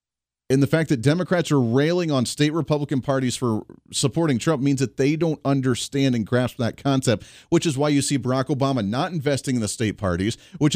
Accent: American